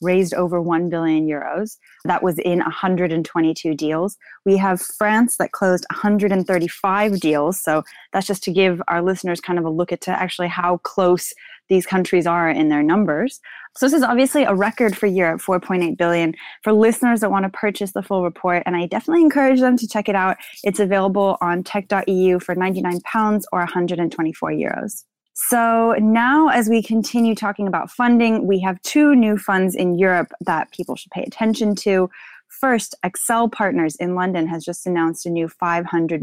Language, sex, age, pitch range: English, female, 10-29, 170-210 Hz